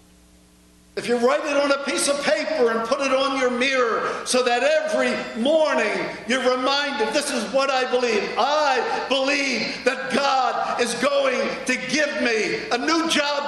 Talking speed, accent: 170 wpm, American